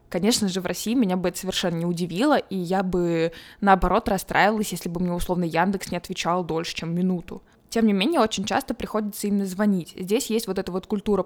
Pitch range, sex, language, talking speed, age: 180-210 Hz, female, Russian, 210 wpm, 20-39